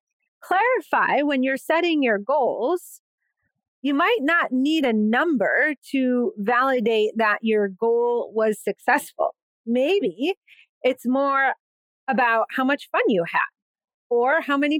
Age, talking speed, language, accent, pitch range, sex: 30-49, 125 wpm, English, American, 220-310 Hz, female